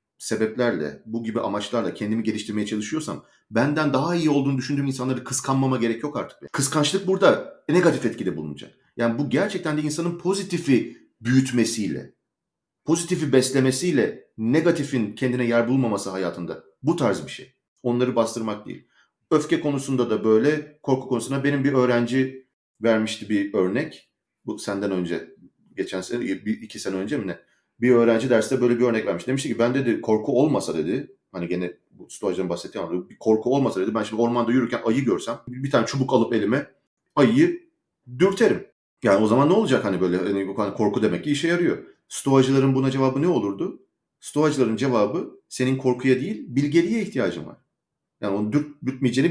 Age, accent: 40-59, native